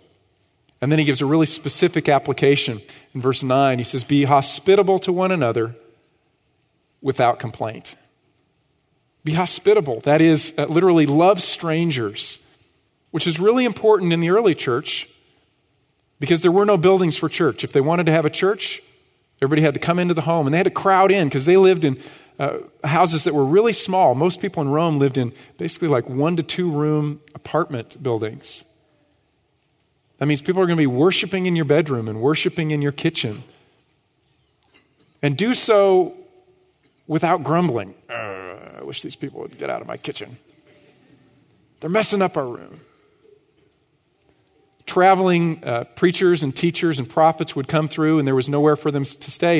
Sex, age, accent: male, 40-59, American